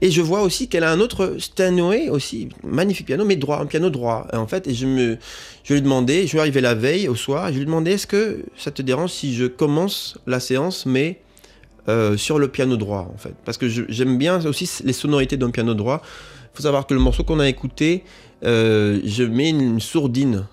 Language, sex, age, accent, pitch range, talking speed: French, male, 30-49, French, 105-135 Hz, 240 wpm